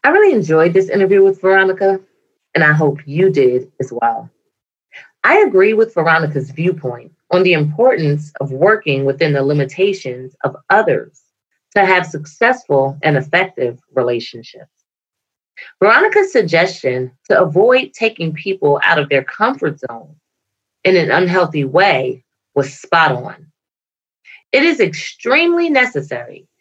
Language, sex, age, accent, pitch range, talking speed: English, female, 30-49, American, 135-195 Hz, 130 wpm